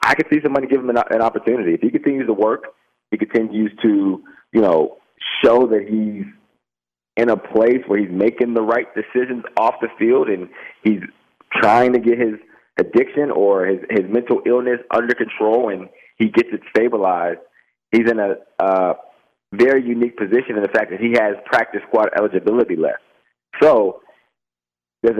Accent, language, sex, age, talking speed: American, English, male, 30-49, 170 wpm